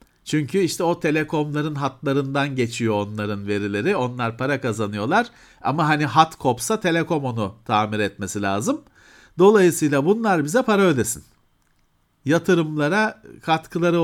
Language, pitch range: Turkish, 125-195 Hz